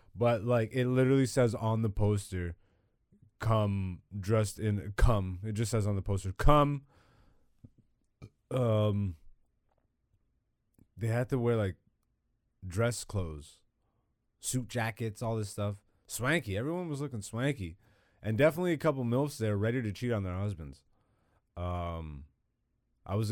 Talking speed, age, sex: 135 wpm, 30-49, male